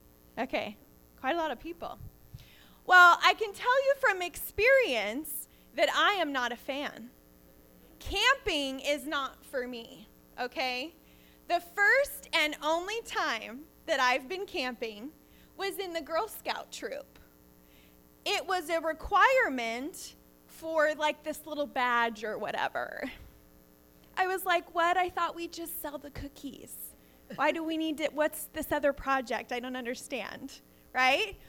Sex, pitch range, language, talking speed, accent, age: female, 245-335 Hz, English, 145 wpm, American, 20-39